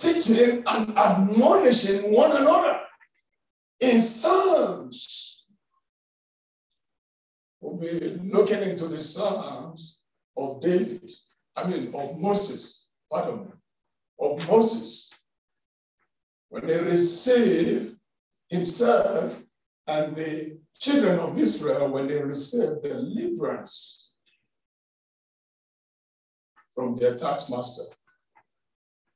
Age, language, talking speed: 60-79, English, 80 wpm